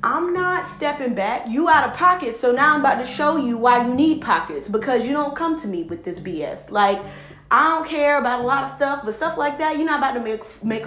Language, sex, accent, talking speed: English, female, American, 260 wpm